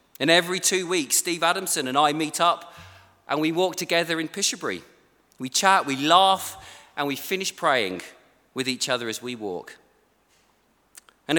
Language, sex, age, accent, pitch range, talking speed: English, male, 40-59, British, 150-200 Hz, 165 wpm